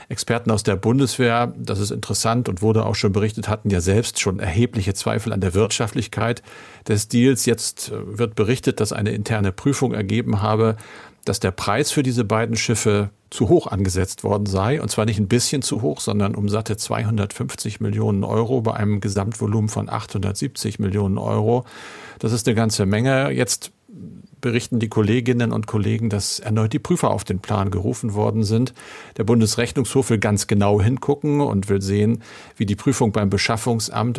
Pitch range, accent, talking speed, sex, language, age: 105-120 Hz, German, 175 wpm, male, German, 50-69